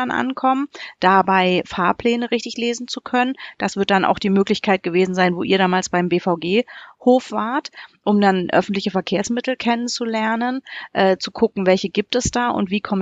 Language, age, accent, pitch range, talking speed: German, 30-49, German, 180-230 Hz, 165 wpm